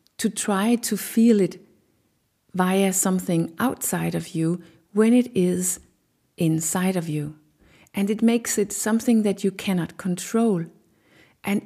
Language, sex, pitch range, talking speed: English, female, 180-230 Hz, 135 wpm